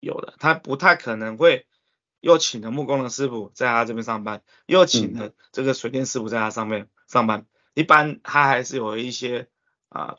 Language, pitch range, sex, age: Chinese, 120-165 Hz, male, 20-39